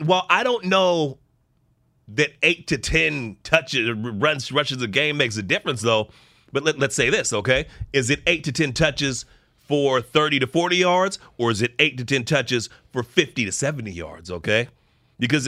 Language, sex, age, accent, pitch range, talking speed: English, male, 30-49, American, 125-175 Hz, 190 wpm